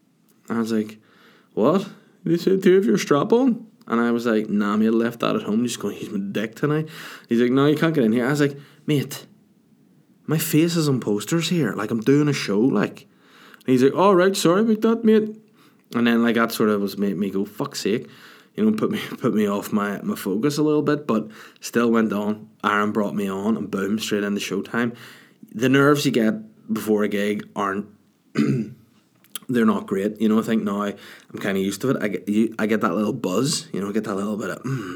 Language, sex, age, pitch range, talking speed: English, male, 20-39, 105-155 Hz, 240 wpm